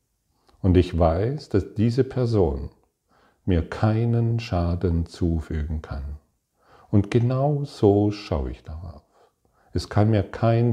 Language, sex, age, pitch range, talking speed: German, male, 40-59, 85-110 Hz, 115 wpm